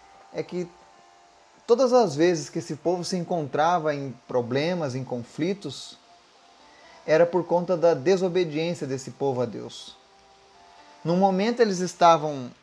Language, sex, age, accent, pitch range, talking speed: Portuguese, male, 30-49, Brazilian, 125-180 Hz, 130 wpm